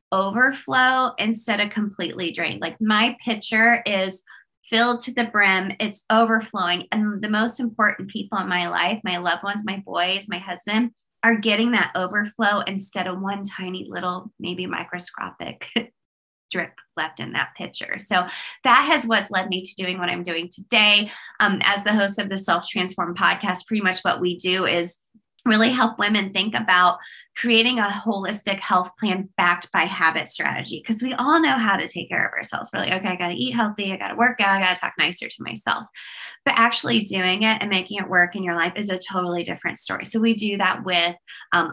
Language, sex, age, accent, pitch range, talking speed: English, female, 20-39, American, 180-220 Hz, 195 wpm